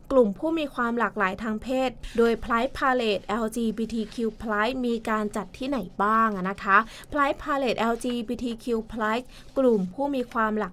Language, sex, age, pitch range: English, female, 20-39, 210-255 Hz